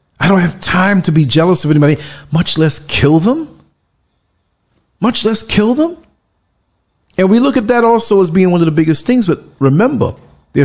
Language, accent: English, American